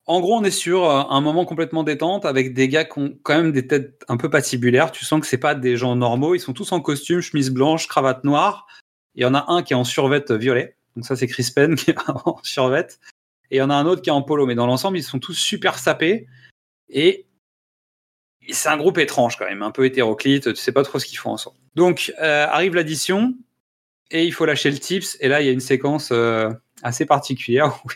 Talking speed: 245 wpm